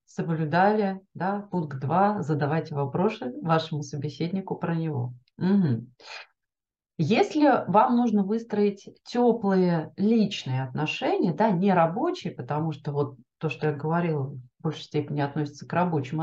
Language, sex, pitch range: Russian, female, 150-210 Hz